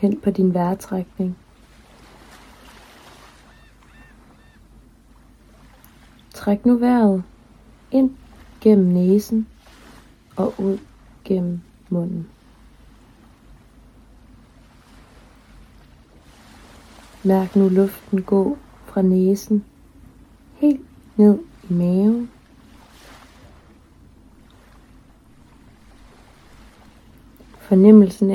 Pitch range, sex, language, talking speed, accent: 180-210 Hz, female, Danish, 55 wpm, native